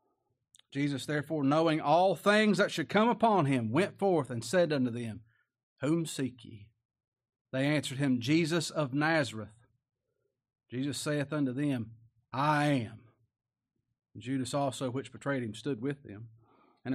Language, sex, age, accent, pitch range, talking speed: English, male, 40-59, American, 120-155 Hz, 140 wpm